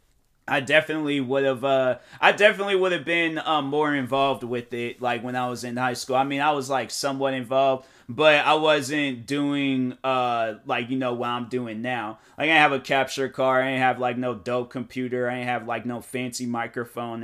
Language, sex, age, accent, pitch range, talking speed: English, male, 20-39, American, 125-155 Hz, 215 wpm